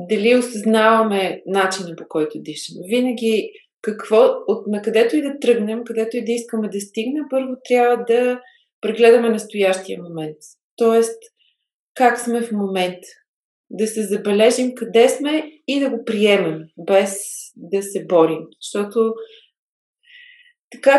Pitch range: 210-255 Hz